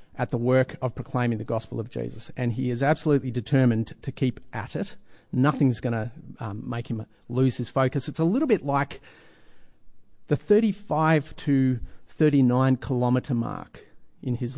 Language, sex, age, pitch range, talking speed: English, male, 40-59, 125-150 Hz, 165 wpm